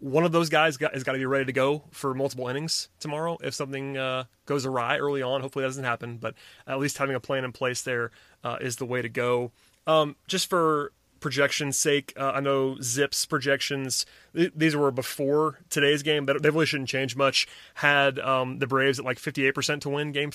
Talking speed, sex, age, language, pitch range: 210 wpm, male, 30-49, English, 130-145 Hz